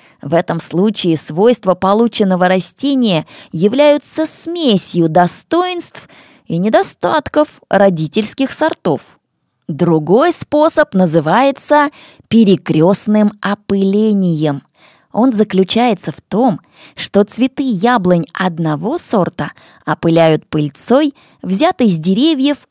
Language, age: English, 20-39